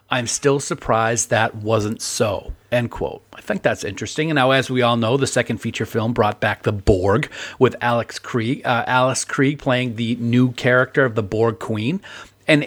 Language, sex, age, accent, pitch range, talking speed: English, male, 40-59, American, 110-140 Hz, 185 wpm